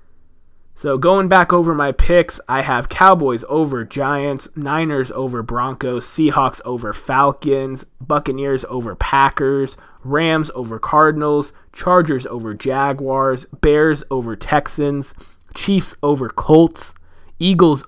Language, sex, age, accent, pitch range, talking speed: English, male, 20-39, American, 115-145 Hz, 110 wpm